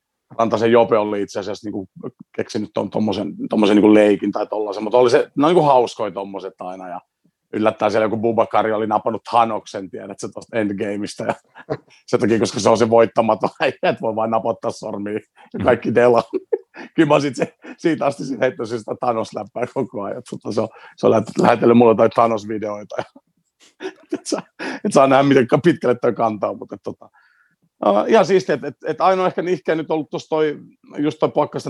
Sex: male